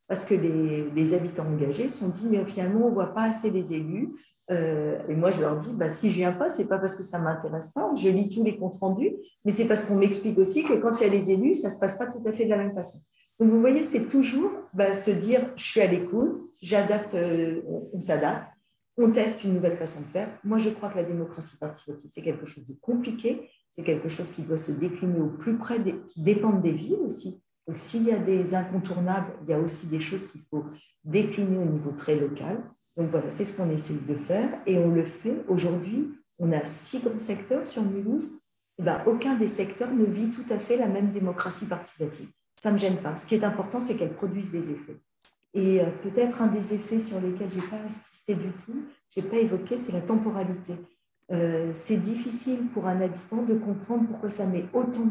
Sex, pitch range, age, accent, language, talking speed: female, 175-225 Hz, 40-59, French, French, 235 wpm